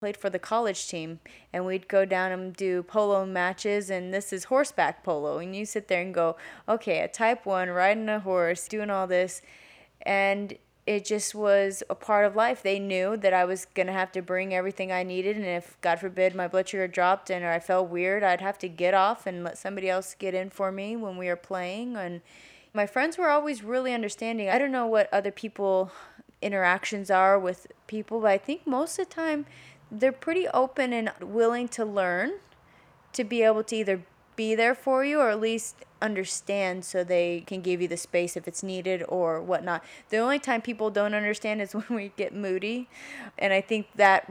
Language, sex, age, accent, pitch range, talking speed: English, female, 20-39, American, 180-215 Hz, 210 wpm